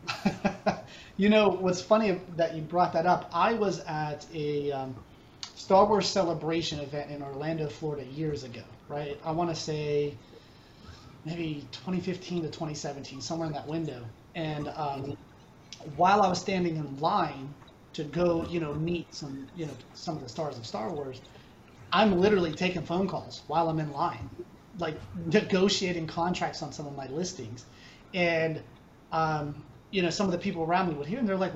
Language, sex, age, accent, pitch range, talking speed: English, male, 30-49, American, 145-185 Hz, 175 wpm